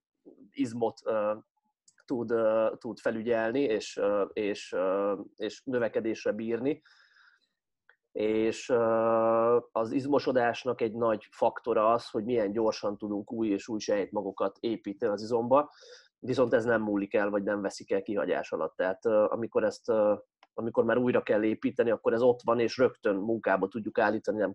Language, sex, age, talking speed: Hungarian, male, 30-49, 135 wpm